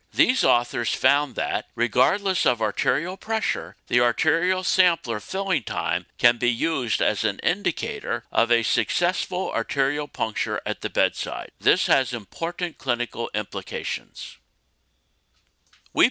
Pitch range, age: 120-175 Hz, 60-79